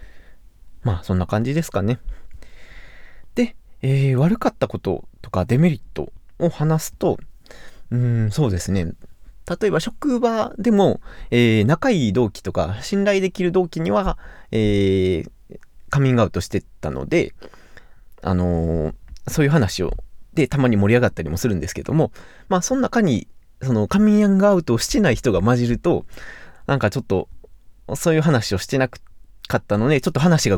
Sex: male